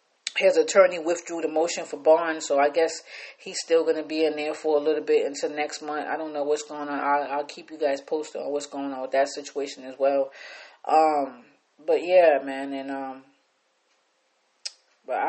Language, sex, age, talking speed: English, female, 20-39, 205 wpm